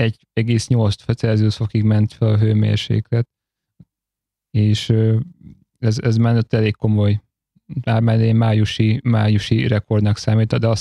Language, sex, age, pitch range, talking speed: Hungarian, male, 30-49, 110-125 Hz, 105 wpm